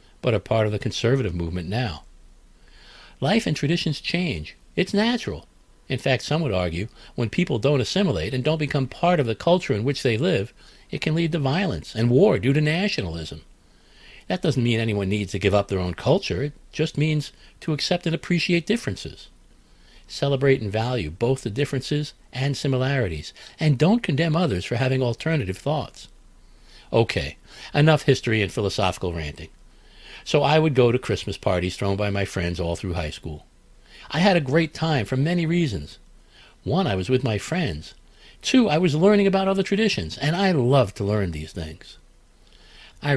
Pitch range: 95-145 Hz